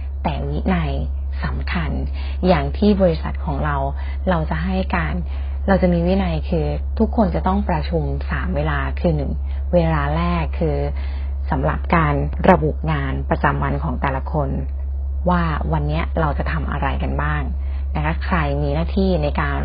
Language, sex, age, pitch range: Thai, female, 20-39, 70-80 Hz